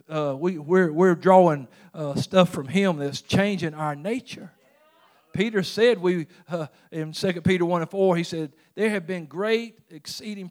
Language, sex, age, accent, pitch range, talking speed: English, male, 50-69, American, 150-185 Hz, 170 wpm